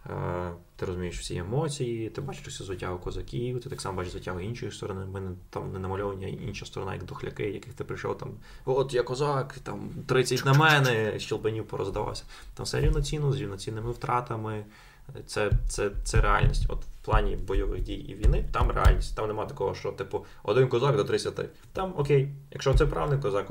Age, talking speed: 20-39, 180 wpm